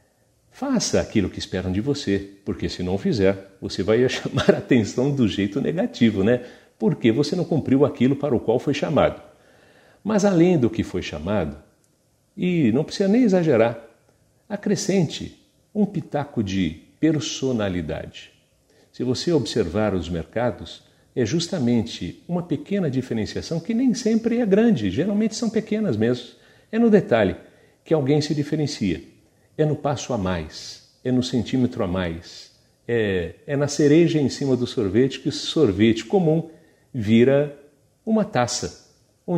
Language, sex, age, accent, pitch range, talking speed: Portuguese, male, 50-69, Brazilian, 105-155 Hz, 150 wpm